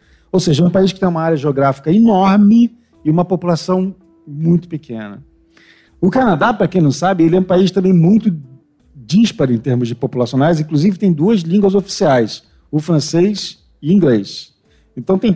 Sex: male